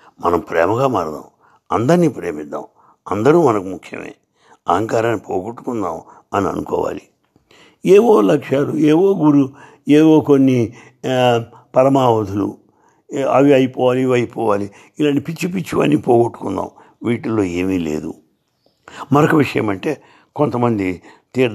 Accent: Indian